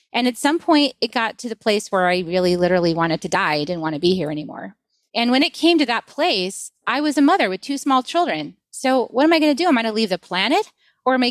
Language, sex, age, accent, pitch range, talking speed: English, female, 30-49, American, 190-260 Hz, 290 wpm